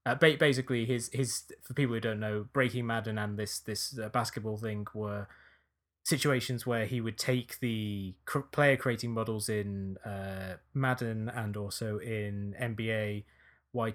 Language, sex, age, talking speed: English, male, 20-39, 155 wpm